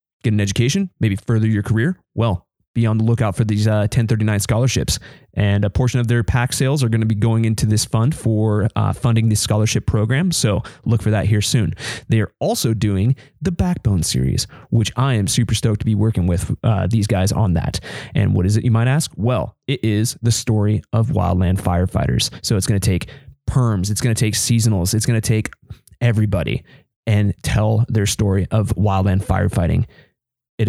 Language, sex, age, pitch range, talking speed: English, male, 20-39, 105-120 Hz, 205 wpm